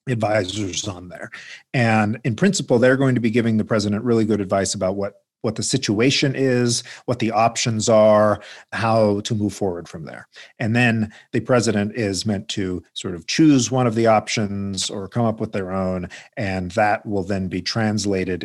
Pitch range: 100-120 Hz